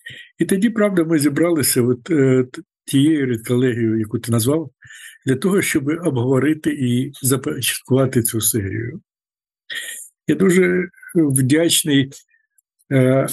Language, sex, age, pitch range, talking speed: Ukrainian, male, 50-69, 125-165 Hz, 110 wpm